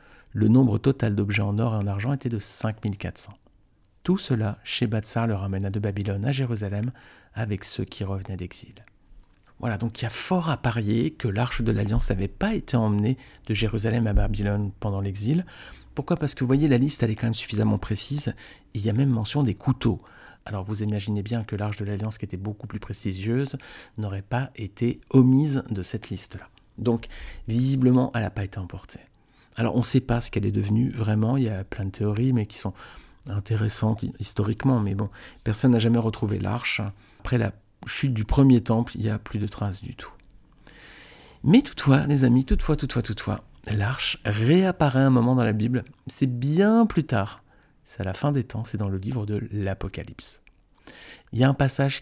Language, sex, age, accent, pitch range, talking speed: French, male, 50-69, French, 105-130 Hz, 200 wpm